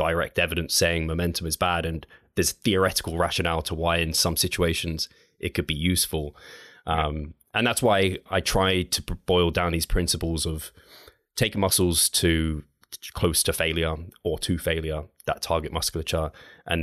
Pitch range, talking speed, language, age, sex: 80-90 Hz, 155 wpm, English, 20-39, male